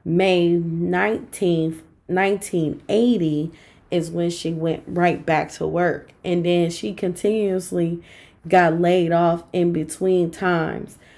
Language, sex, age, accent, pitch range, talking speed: English, female, 20-39, American, 160-180 Hz, 115 wpm